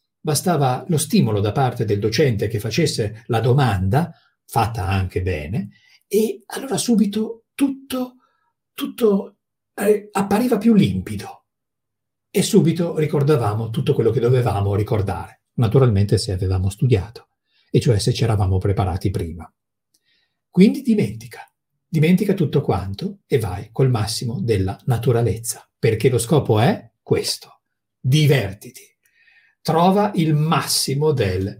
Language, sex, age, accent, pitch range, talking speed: Italian, male, 50-69, native, 110-160 Hz, 120 wpm